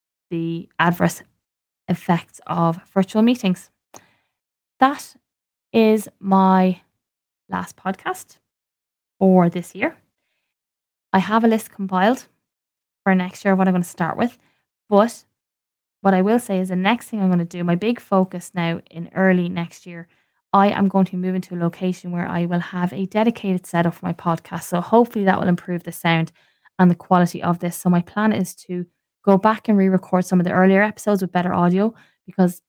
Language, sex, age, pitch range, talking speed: English, female, 20-39, 175-195 Hz, 180 wpm